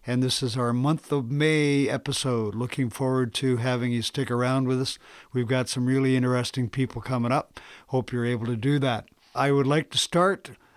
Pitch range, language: 120-140 Hz, English